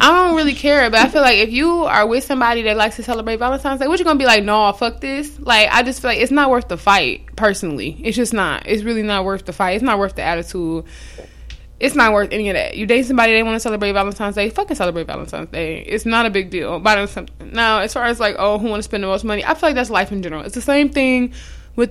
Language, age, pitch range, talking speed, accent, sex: English, 20-39, 195-235 Hz, 280 wpm, American, female